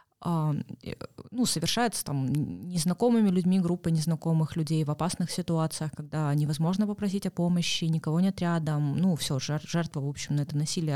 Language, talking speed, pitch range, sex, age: Russian, 150 wpm, 150-195 Hz, female, 20-39